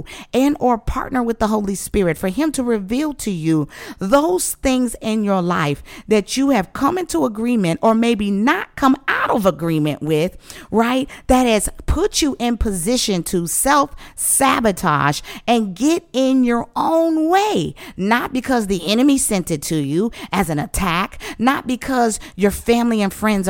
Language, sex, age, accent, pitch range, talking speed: English, female, 50-69, American, 185-260 Hz, 165 wpm